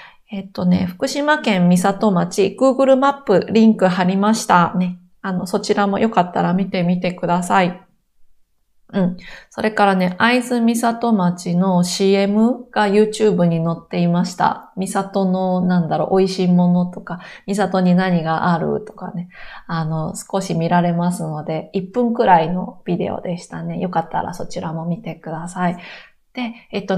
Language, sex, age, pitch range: Japanese, female, 20-39, 175-220 Hz